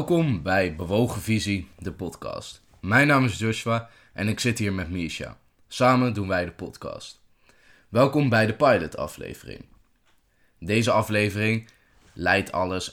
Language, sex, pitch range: Dutch, male, 95-125 Hz